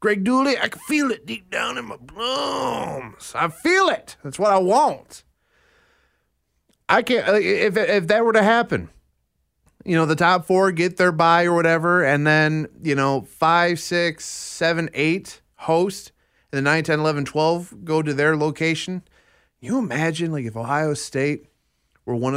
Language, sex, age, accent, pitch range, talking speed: English, male, 30-49, American, 115-170 Hz, 170 wpm